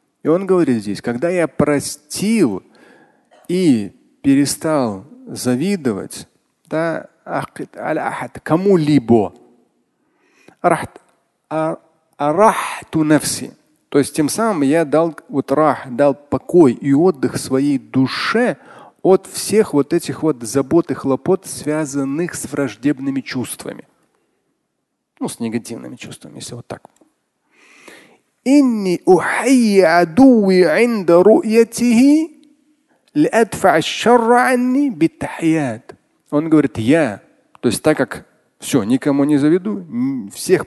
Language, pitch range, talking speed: Russian, 135-220 Hz, 90 wpm